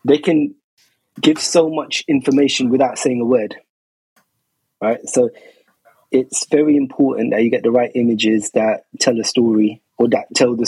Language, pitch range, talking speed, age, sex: English, 120-145 Hz, 165 wpm, 20-39, male